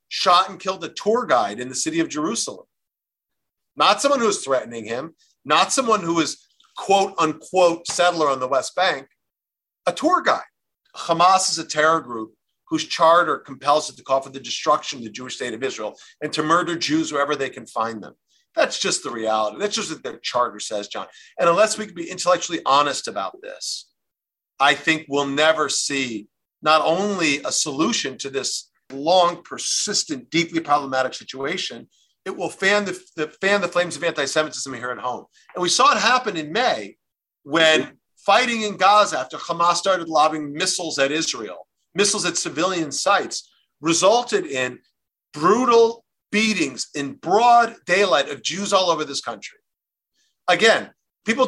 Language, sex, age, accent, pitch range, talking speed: English, male, 50-69, American, 150-205 Hz, 170 wpm